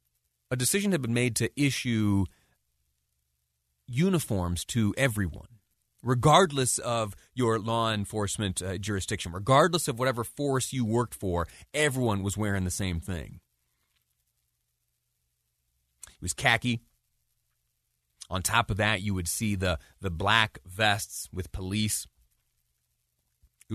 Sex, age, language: male, 30-49, English